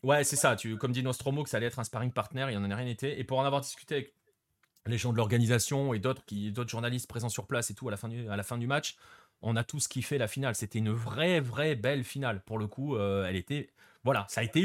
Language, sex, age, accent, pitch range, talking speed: French, male, 30-49, French, 110-140 Hz, 290 wpm